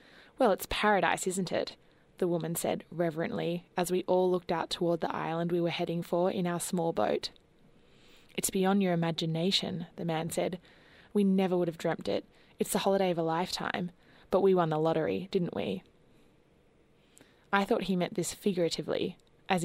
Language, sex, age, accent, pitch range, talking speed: English, female, 20-39, Australian, 170-195 Hz, 175 wpm